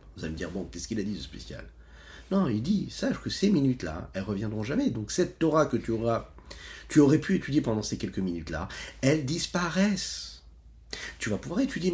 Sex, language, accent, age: male, French, French, 40-59